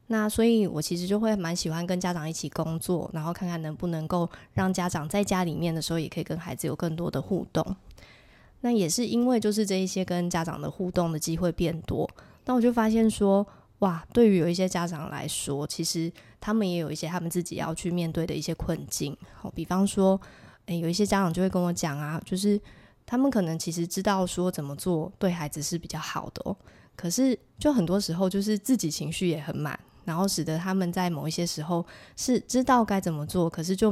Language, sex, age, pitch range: Chinese, female, 20-39, 165-195 Hz